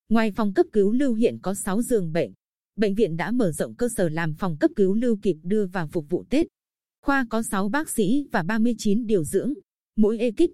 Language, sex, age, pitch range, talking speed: Vietnamese, female, 20-39, 190-240 Hz, 220 wpm